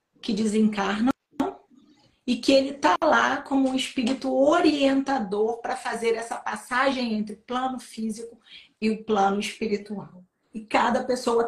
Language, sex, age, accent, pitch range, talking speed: Portuguese, female, 40-59, Brazilian, 210-265 Hz, 135 wpm